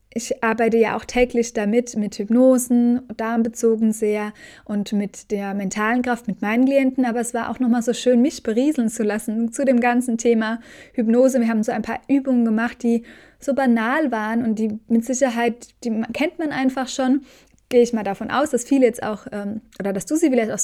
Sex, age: female, 20-39